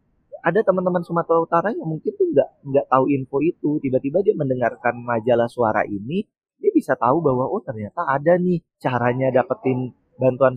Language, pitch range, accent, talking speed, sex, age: Indonesian, 120-145 Hz, native, 155 wpm, male, 20-39